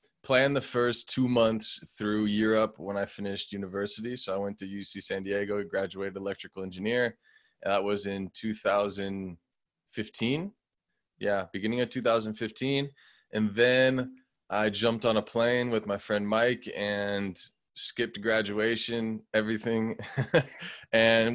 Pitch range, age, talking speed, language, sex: 100-115 Hz, 20-39, 125 wpm, English, male